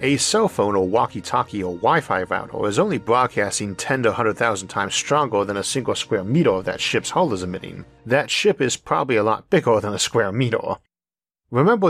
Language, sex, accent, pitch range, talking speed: English, male, American, 90-135 Hz, 200 wpm